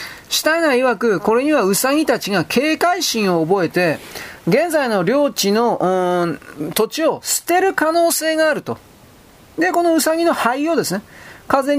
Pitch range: 190-290 Hz